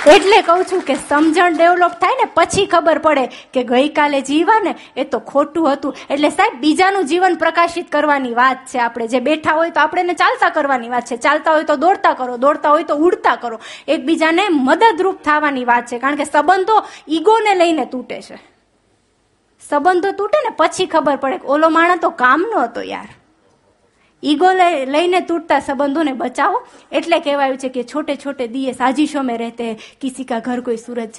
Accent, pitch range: native, 255-340 Hz